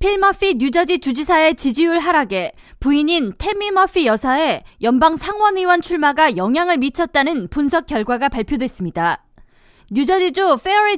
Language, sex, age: Korean, female, 20-39